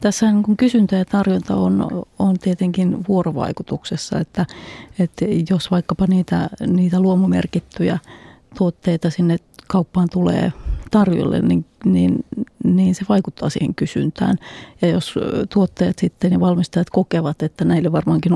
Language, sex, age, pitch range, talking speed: Finnish, female, 30-49, 170-195 Hz, 125 wpm